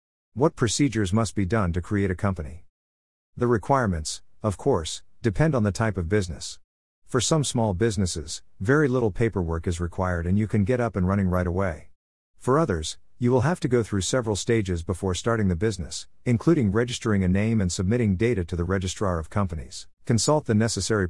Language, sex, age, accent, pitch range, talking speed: English, male, 50-69, American, 90-115 Hz, 190 wpm